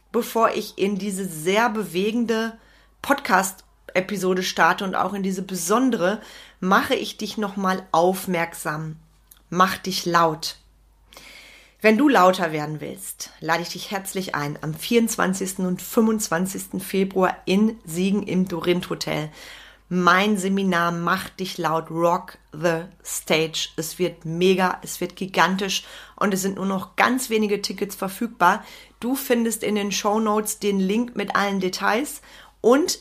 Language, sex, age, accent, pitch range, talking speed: German, female, 30-49, German, 175-210 Hz, 140 wpm